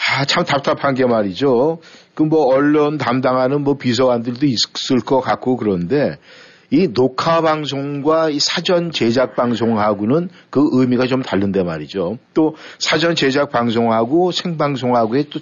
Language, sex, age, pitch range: Korean, male, 50-69, 115-155 Hz